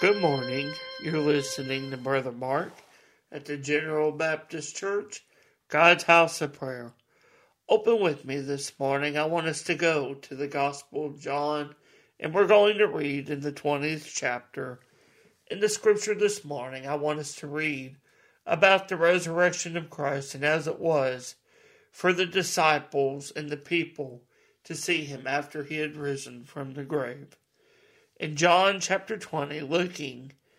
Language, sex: English, male